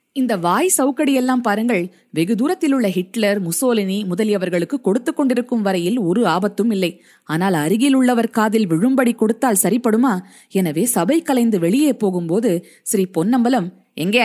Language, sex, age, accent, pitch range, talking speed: Tamil, female, 20-39, native, 185-250 Hz, 130 wpm